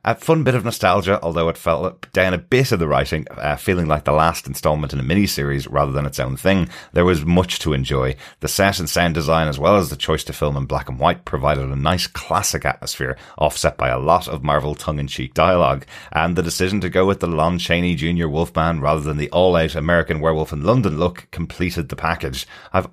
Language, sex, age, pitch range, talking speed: English, male, 30-49, 75-90 Hz, 225 wpm